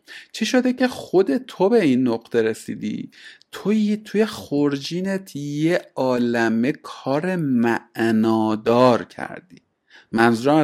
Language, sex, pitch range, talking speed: Persian, male, 115-160 Hz, 100 wpm